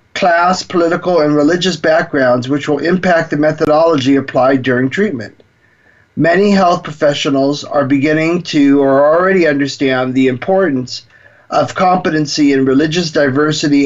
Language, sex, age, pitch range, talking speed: English, male, 40-59, 130-180 Hz, 125 wpm